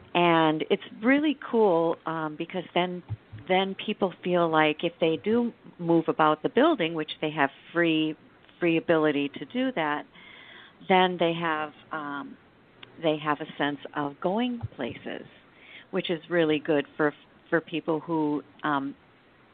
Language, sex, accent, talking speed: English, female, American, 145 wpm